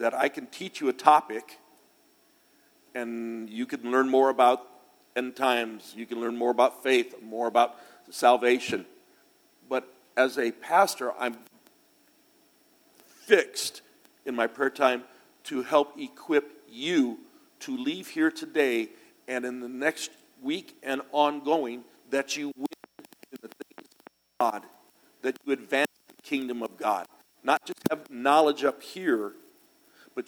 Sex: male